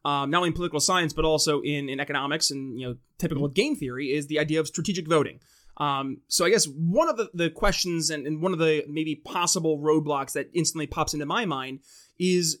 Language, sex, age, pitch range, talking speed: English, male, 20-39, 150-175 Hz, 225 wpm